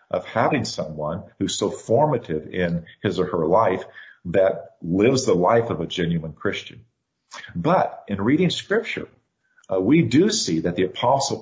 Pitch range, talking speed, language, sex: 85-115 Hz, 160 wpm, English, male